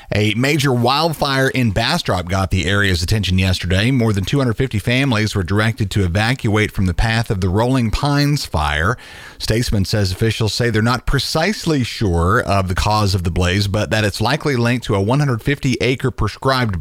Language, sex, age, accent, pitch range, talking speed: English, male, 40-59, American, 95-125 Hz, 175 wpm